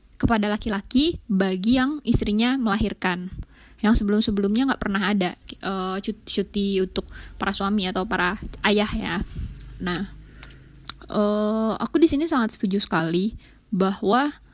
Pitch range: 200-235 Hz